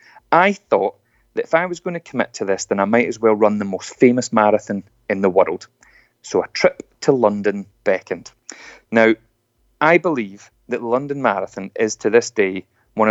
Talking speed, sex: 190 wpm, male